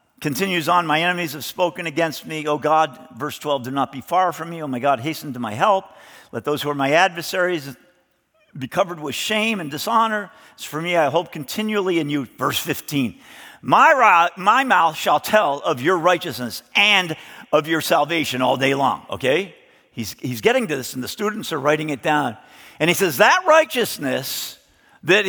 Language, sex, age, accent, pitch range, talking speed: English, male, 50-69, American, 150-205 Hz, 195 wpm